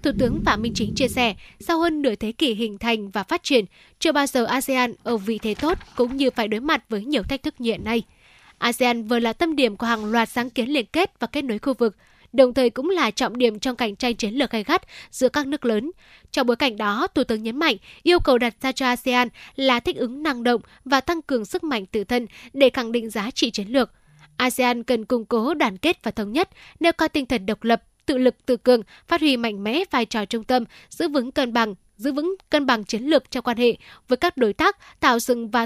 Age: 10-29